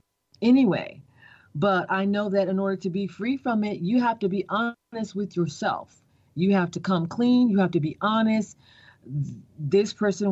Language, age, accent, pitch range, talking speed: English, 40-59, American, 155-200 Hz, 180 wpm